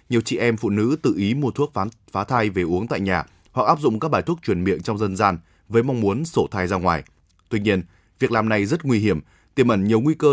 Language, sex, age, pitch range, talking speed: Vietnamese, male, 20-39, 95-120 Hz, 265 wpm